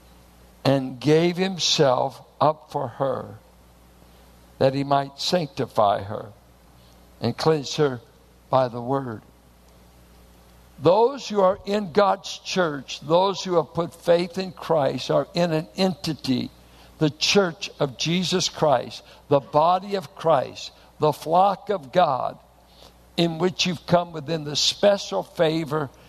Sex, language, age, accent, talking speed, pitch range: male, English, 60-79, American, 125 wpm, 125-180 Hz